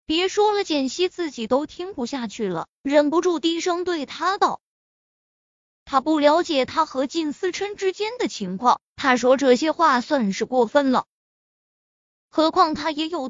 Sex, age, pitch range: female, 20-39, 255-350 Hz